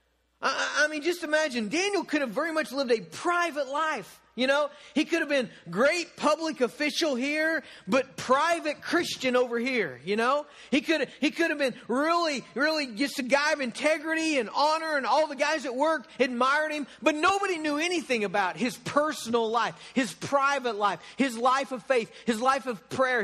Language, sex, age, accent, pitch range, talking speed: English, male, 40-59, American, 200-295 Hz, 190 wpm